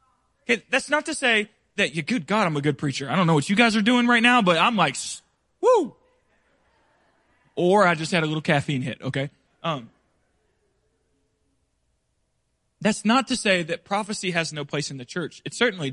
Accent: American